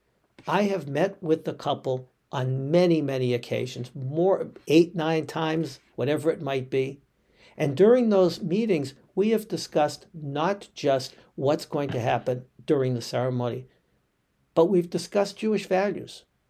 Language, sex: English, male